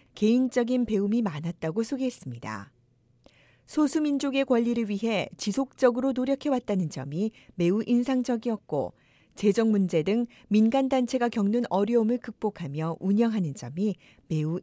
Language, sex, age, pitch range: Korean, female, 40-59, 195-250 Hz